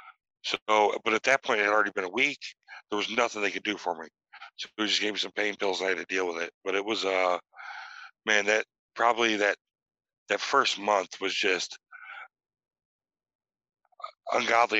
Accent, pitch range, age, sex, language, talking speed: American, 100-115 Hz, 60-79, male, English, 195 wpm